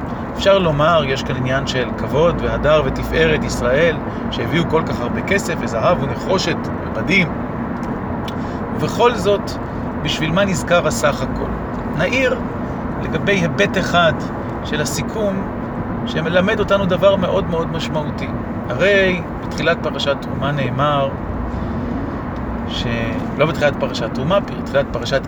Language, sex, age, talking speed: Hebrew, male, 40-59, 115 wpm